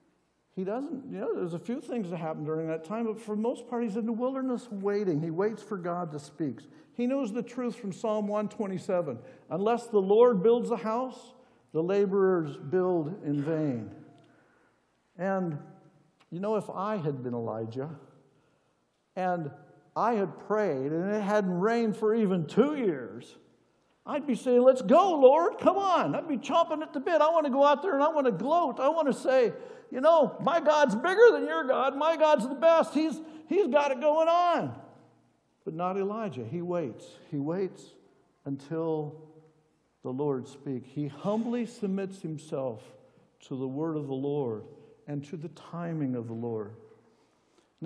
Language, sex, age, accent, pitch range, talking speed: English, male, 60-79, American, 160-245 Hz, 180 wpm